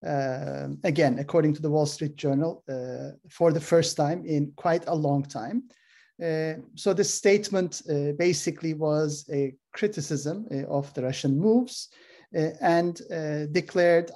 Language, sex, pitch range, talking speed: Turkish, male, 145-180 Hz, 155 wpm